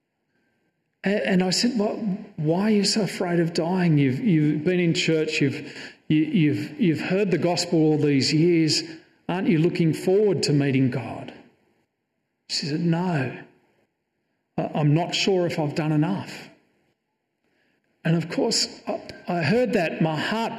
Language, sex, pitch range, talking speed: English, male, 145-195 Hz, 145 wpm